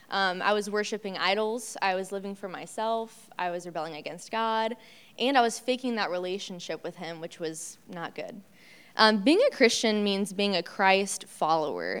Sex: female